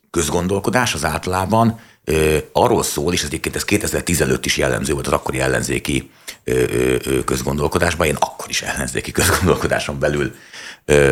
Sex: male